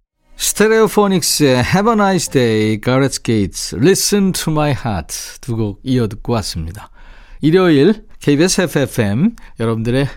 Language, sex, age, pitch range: Korean, male, 50-69, 110-165 Hz